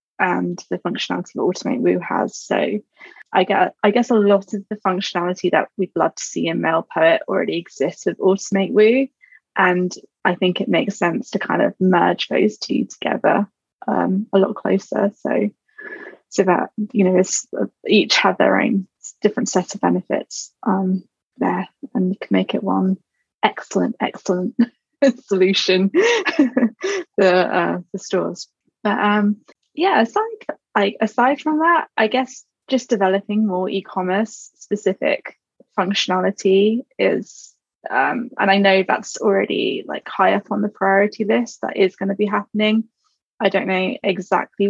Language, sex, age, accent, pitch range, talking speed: English, female, 20-39, British, 190-240 Hz, 155 wpm